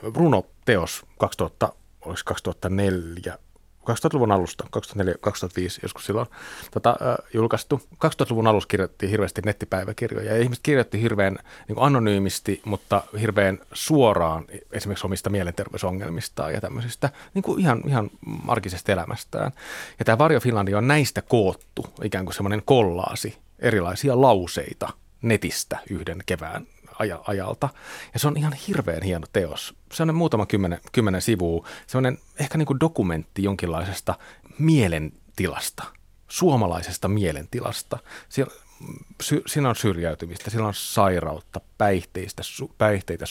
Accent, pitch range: native, 95-125 Hz